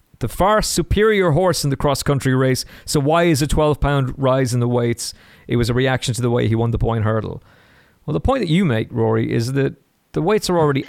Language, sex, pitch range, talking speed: English, male, 110-150 Hz, 230 wpm